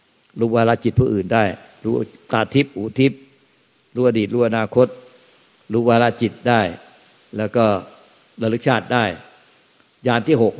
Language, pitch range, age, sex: Thai, 105-120 Hz, 60-79, male